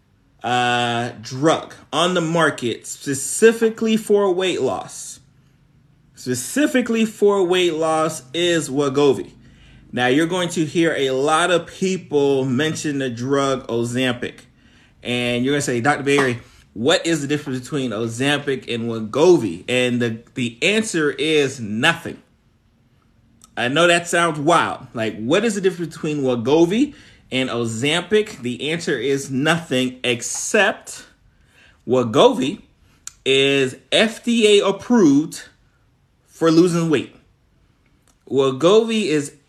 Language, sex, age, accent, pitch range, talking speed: English, male, 30-49, American, 130-175 Hz, 115 wpm